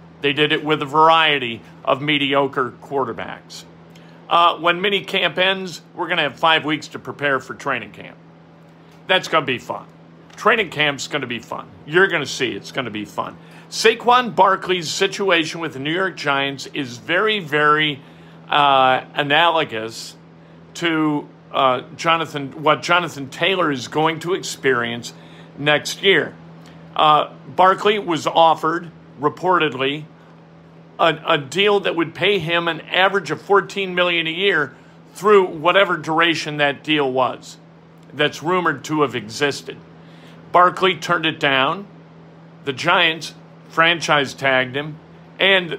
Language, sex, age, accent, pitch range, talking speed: English, male, 50-69, American, 135-180 Hz, 145 wpm